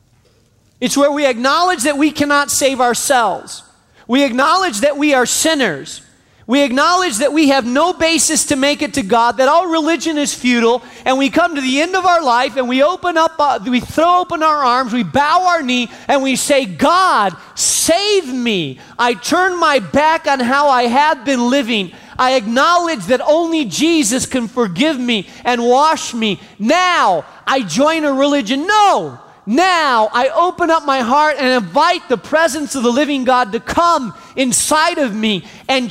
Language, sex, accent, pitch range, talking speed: English, male, American, 245-315 Hz, 180 wpm